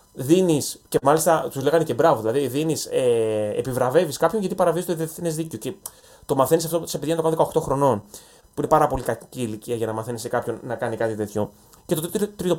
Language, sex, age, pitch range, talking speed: Greek, male, 20-39, 140-190 Hz, 210 wpm